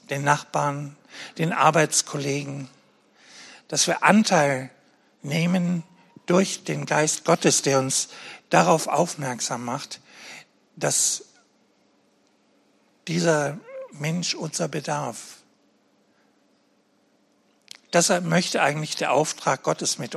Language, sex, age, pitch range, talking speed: German, male, 60-79, 135-175 Hz, 85 wpm